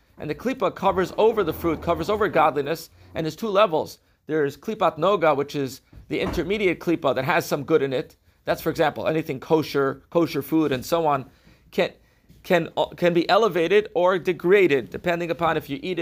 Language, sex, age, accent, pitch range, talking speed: English, male, 40-59, American, 145-180 Hz, 185 wpm